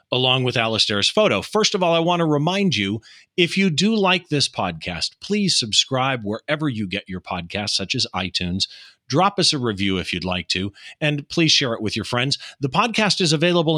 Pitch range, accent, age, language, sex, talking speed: 105-175 Hz, American, 40-59, English, male, 205 wpm